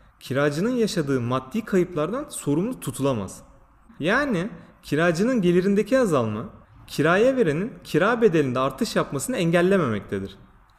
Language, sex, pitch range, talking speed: Turkish, male, 125-200 Hz, 95 wpm